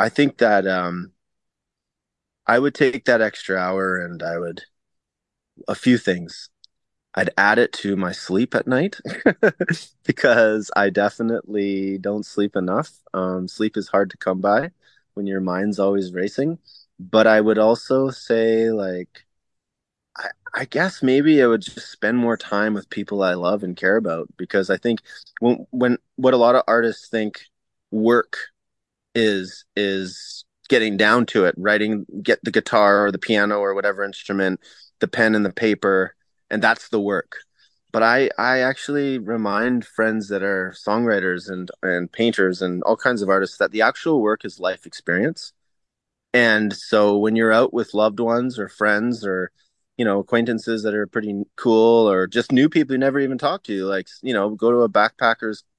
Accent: American